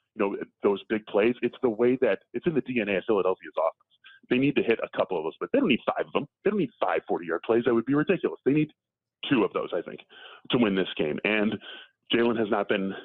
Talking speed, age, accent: 260 wpm, 30-49, American